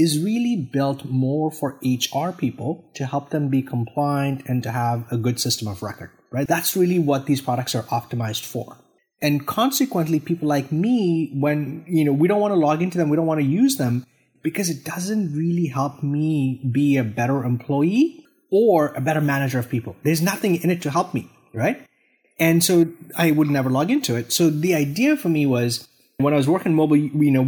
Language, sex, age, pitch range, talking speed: English, male, 20-39, 125-165 Hz, 205 wpm